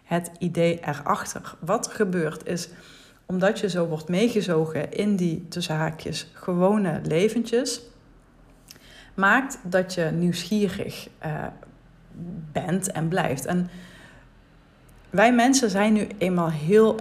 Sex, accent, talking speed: female, Dutch, 115 wpm